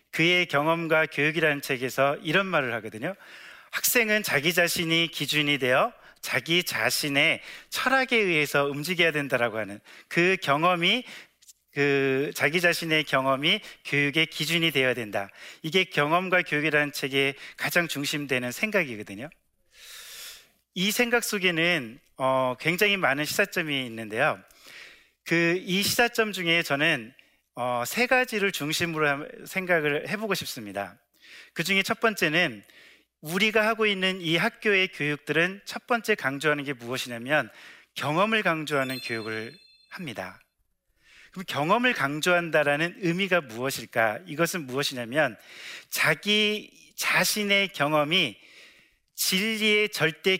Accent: native